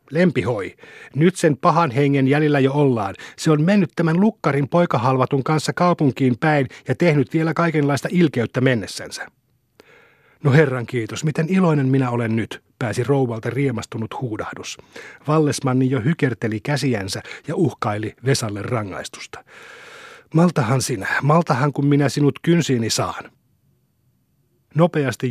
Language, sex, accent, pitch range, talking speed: Finnish, male, native, 120-155 Hz, 125 wpm